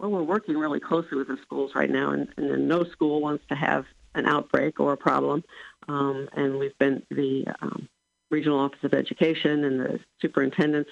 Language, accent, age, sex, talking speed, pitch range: English, American, 50-69, female, 190 wpm, 135-160 Hz